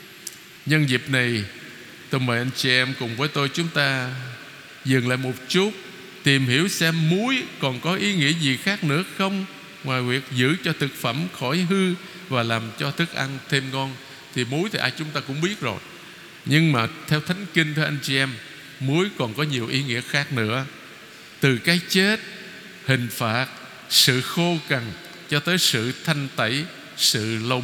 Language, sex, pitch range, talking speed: Vietnamese, male, 130-180 Hz, 185 wpm